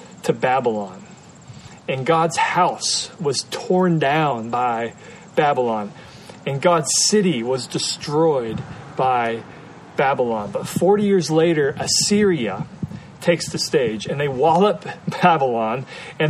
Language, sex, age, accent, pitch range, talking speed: English, male, 40-59, American, 150-185 Hz, 110 wpm